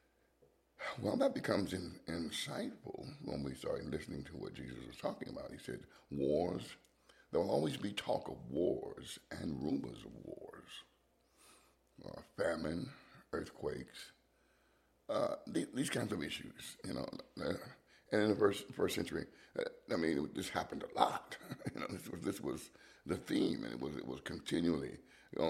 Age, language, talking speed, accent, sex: 60-79, English, 165 wpm, American, male